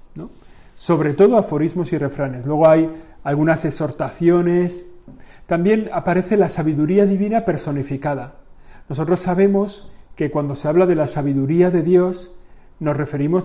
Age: 40-59